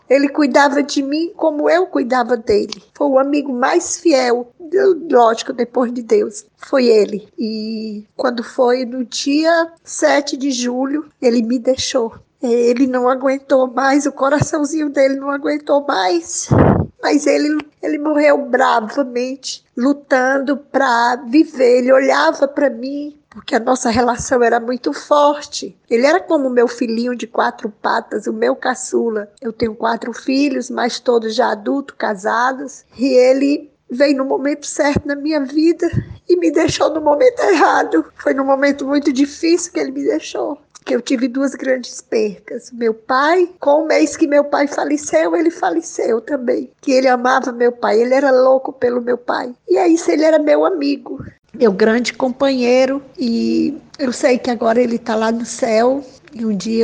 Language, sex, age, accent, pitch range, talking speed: Portuguese, female, 10-29, Brazilian, 245-290 Hz, 165 wpm